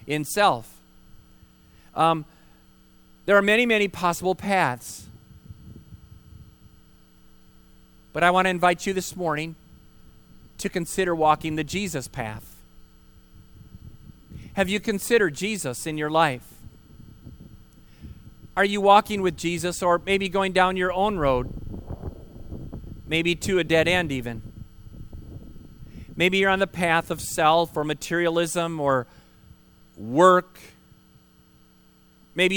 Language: English